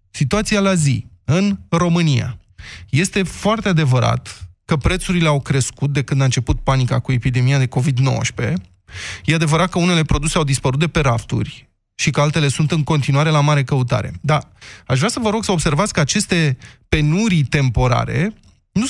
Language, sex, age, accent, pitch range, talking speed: Romanian, male, 20-39, native, 125-180 Hz, 170 wpm